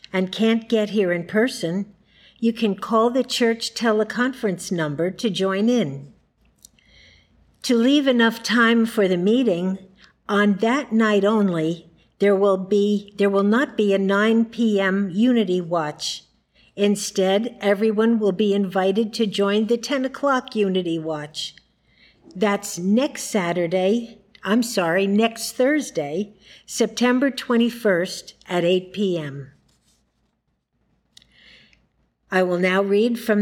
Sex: female